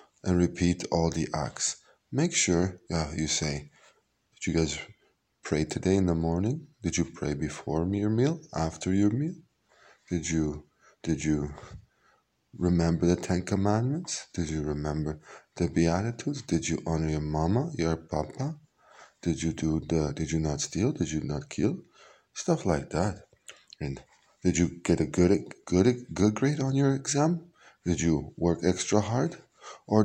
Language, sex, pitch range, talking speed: Hebrew, male, 85-105 Hz, 160 wpm